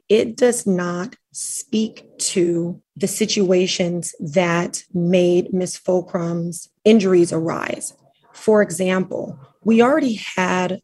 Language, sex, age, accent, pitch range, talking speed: English, female, 30-49, American, 180-205 Hz, 100 wpm